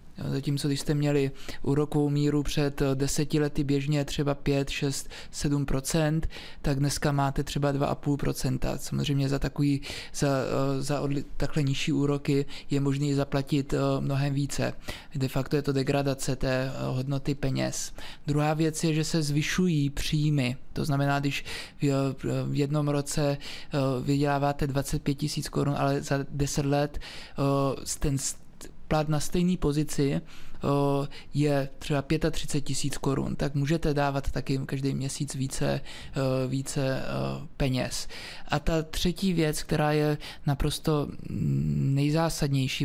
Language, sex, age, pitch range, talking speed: Czech, male, 20-39, 140-150 Hz, 130 wpm